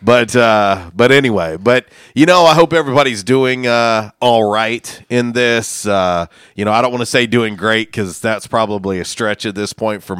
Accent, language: American, English